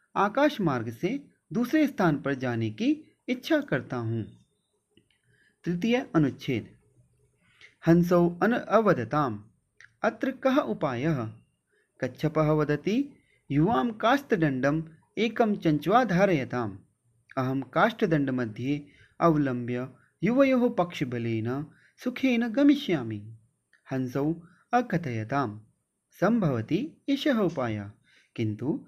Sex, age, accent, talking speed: male, 30-49, native, 70 wpm